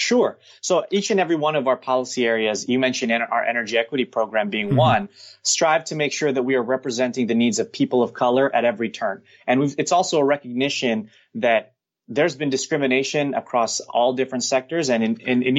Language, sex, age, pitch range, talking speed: English, male, 30-49, 120-140 Hz, 200 wpm